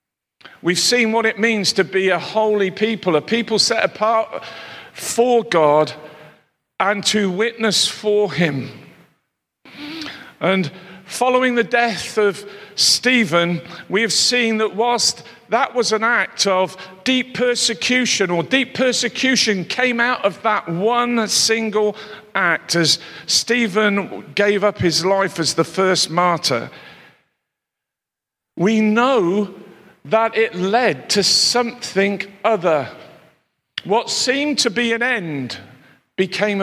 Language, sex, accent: English, male, British